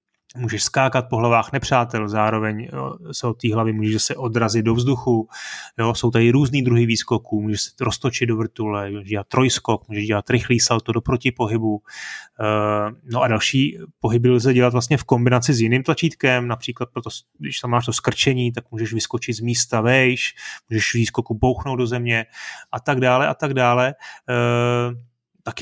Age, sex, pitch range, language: 30-49, male, 115-135 Hz, Czech